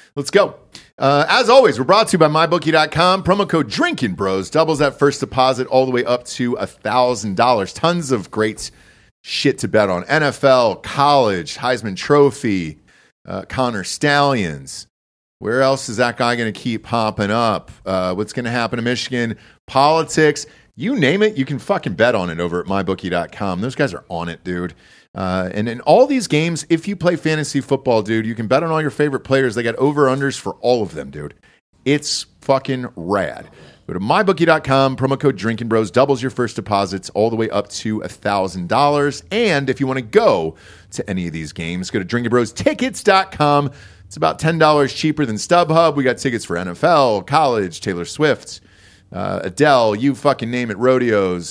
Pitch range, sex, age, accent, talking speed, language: 100-145 Hz, male, 40-59, American, 185 wpm, English